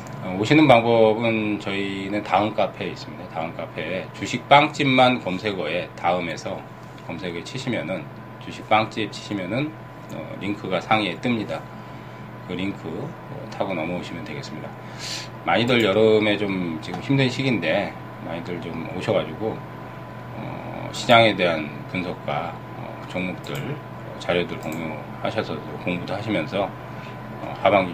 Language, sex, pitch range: Korean, male, 100-125 Hz